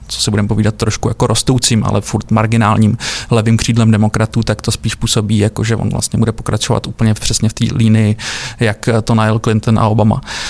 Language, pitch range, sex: Czech, 110-120 Hz, male